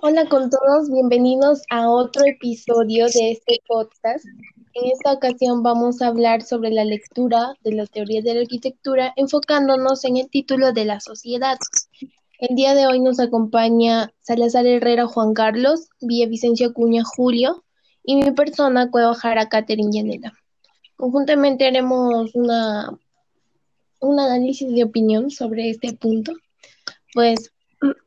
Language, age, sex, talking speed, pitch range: Spanish, 10-29, female, 135 wpm, 230-270 Hz